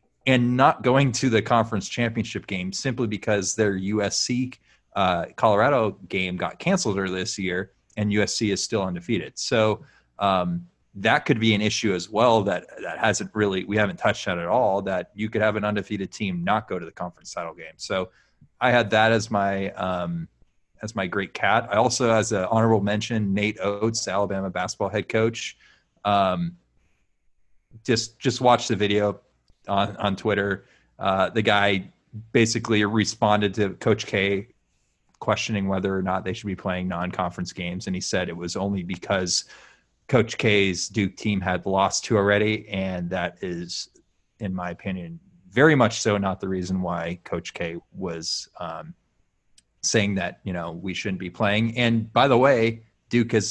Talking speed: 175 wpm